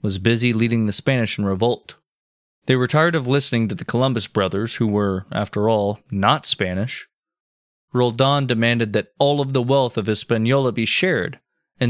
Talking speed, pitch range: 170 wpm, 110-135 Hz